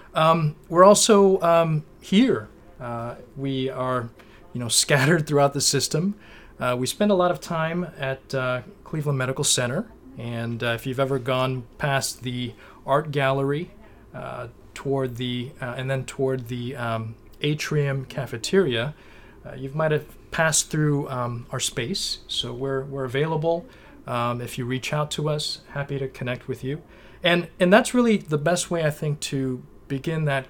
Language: English